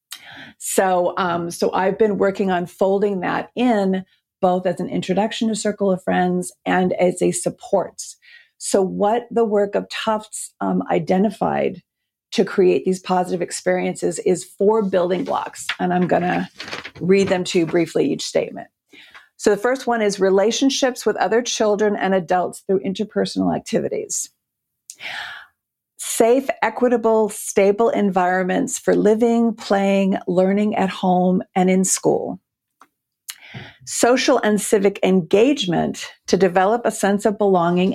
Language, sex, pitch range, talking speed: English, female, 180-215 Hz, 135 wpm